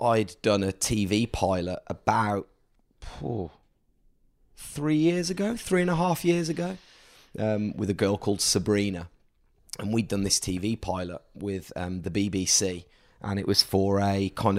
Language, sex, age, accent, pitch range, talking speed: English, male, 30-49, British, 100-135 Hz, 150 wpm